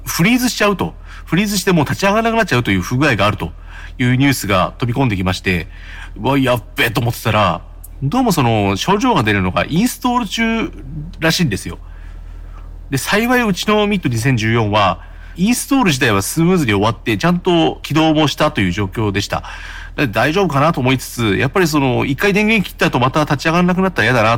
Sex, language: male, Japanese